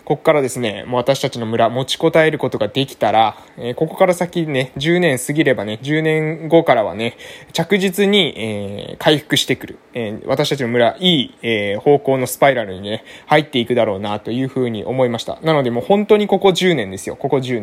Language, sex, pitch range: Japanese, male, 115-160 Hz